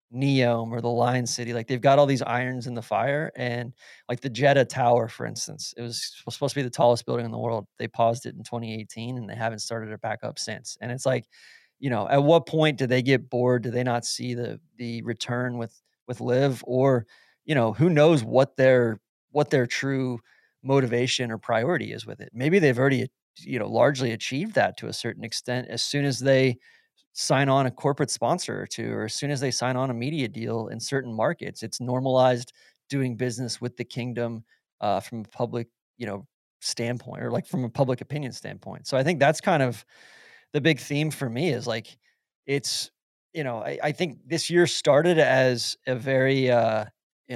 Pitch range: 120-140 Hz